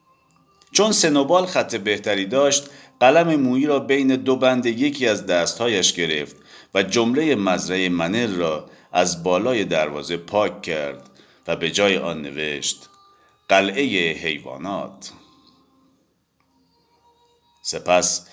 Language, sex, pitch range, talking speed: English, male, 80-130 Hz, 110 wpm